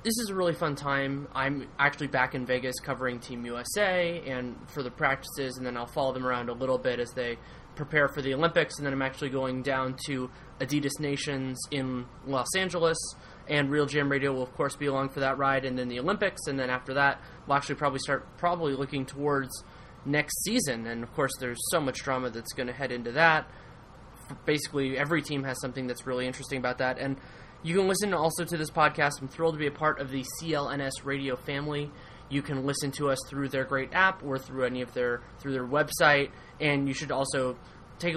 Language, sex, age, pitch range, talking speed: English, male, 20-39, 130-150 Hz, 215 wpm